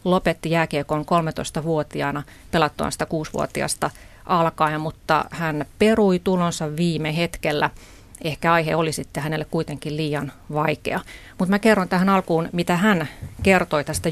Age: 30-49